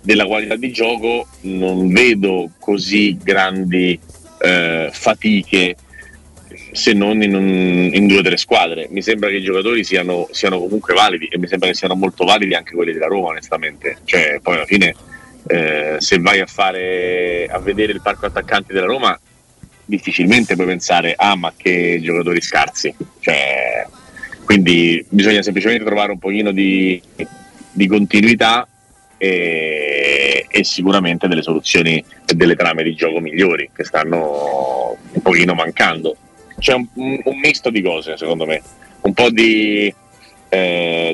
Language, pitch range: Italian, 85-105 Hz